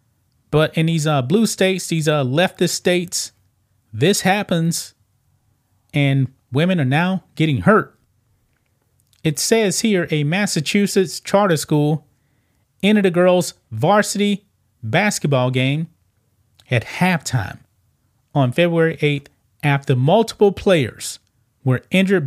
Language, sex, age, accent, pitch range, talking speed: English, male, 30-49, American, 120-175 Hz, 110 wpm